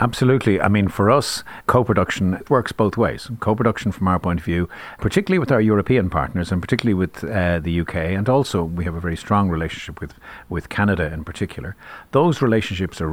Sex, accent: male, Irish